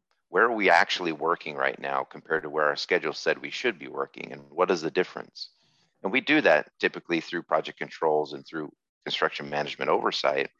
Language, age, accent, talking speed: English, 40-59, American, 200 wpm